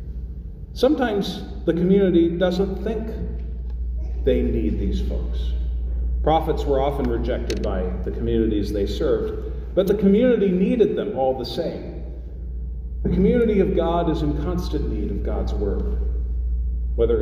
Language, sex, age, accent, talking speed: English, male, 40-59, American, 130 wpm